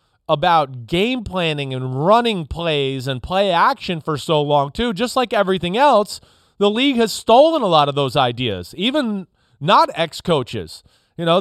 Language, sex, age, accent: English, male, 30-49, American